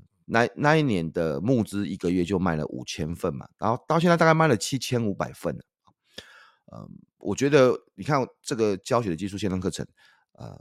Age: 30-49